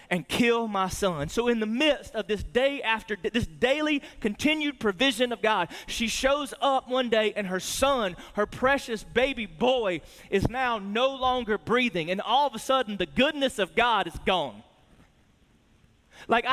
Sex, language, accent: male, English, American